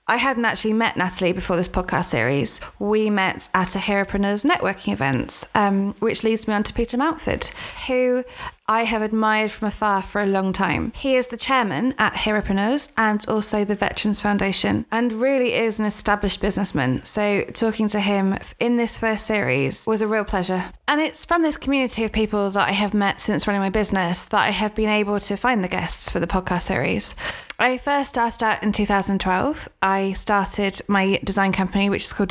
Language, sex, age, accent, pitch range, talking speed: English, female, 20-39, British, 200-230 Hz, 195 wpm